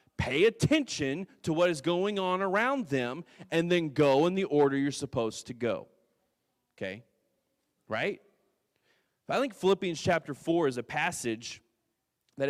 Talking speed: 145 wpm